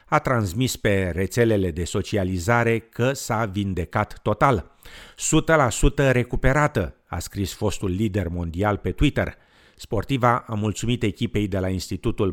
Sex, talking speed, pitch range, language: male, 125 wpm, 95-120 Hz, Romanian